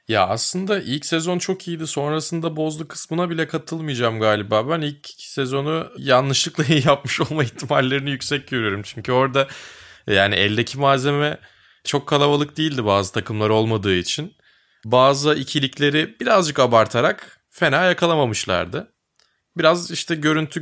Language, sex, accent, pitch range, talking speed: Turkish, male, native, 110-145 Hz, 125 wpm